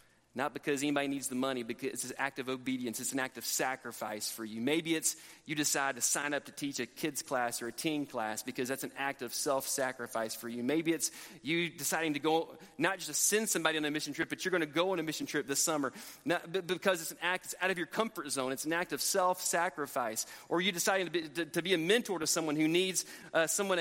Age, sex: 30-49, male